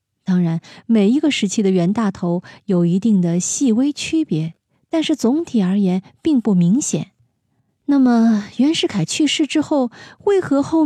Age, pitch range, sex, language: 20-39, 175-250 Hz, female, Chinese